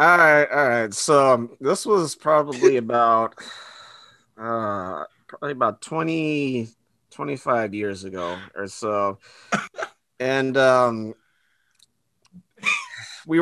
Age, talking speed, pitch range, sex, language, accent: 30-49, 95 wpm, 110-135 Hz, male, English, American